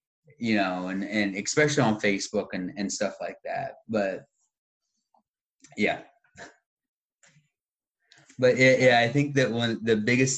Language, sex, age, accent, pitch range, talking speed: English, male, 30-49, American, 95-110 Hz, 125 wpm